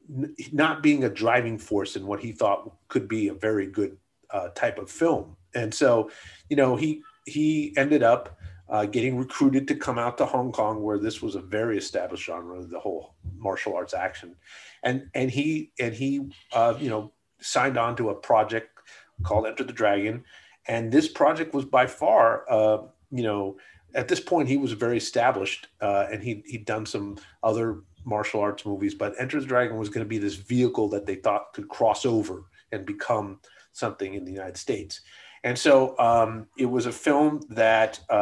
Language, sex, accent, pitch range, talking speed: English, male, American, 105-135 Hz, 185 wpm